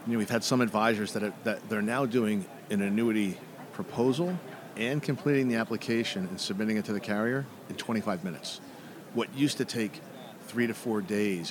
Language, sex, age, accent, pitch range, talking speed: English, male, 50-69, American, 100-130 Hz, 190 wpm